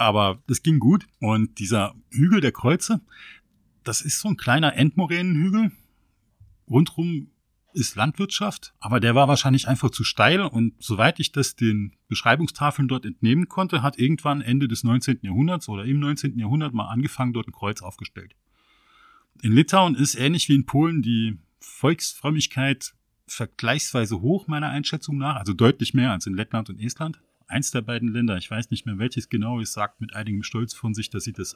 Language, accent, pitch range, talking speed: German, German, 110-145 Hz, 175 wpm